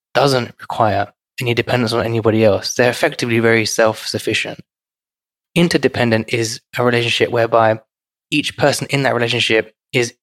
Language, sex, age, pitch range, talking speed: English, male, 20-39, 115-135 Hz, 130 wpm